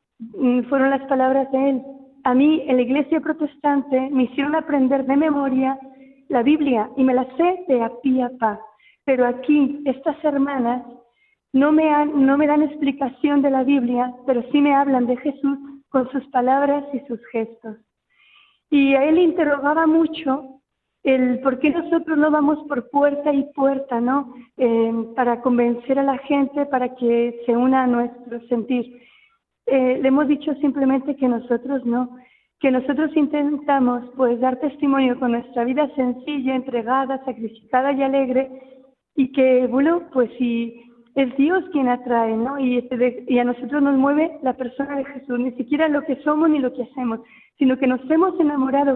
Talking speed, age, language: 170 wpm, 40-59, Spanish